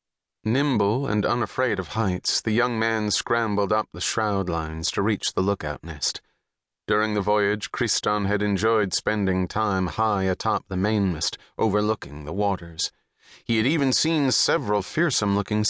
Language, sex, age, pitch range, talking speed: English, male, 30-49, 90-110 Hz, 150 wpm